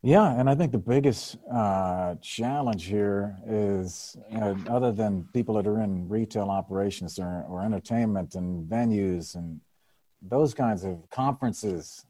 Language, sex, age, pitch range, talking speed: English, male, 50-69, 105-140 Hz, 150 wpm